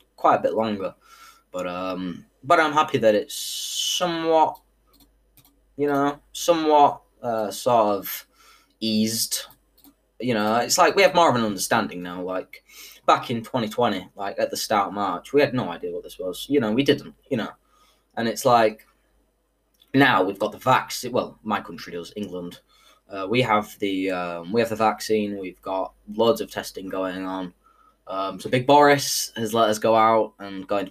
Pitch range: 95-150 Hz